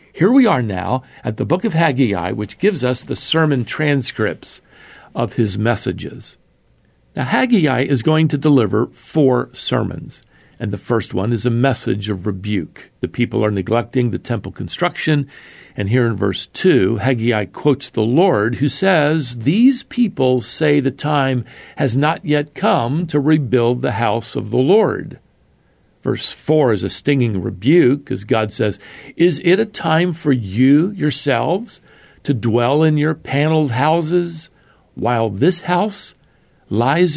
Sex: male